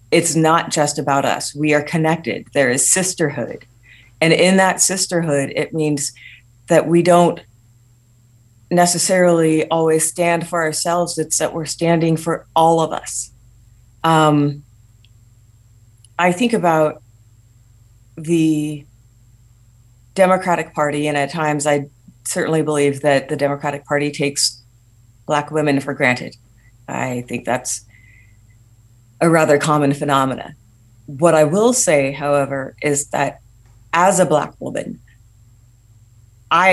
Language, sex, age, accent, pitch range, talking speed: English, female, 40-59, American, 115-160 Hz, 120 wpm